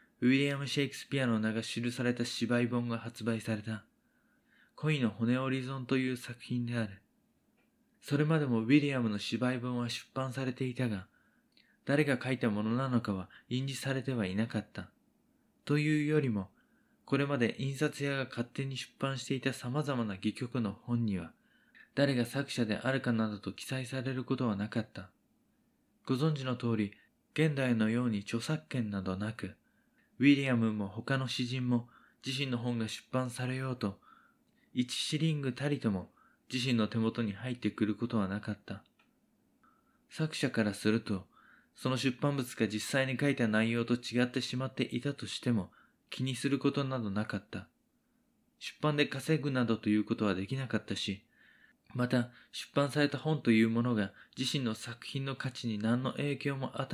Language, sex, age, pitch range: Japanese, male, 20-39, 110-140 Hz